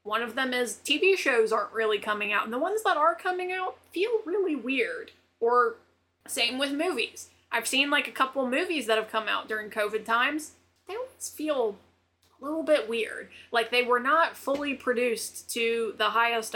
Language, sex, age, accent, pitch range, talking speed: English, female, 20-39, American, 215-295 Hz, 190 wpm